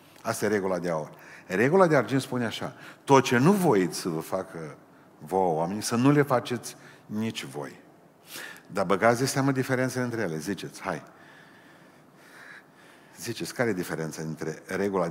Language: Romanian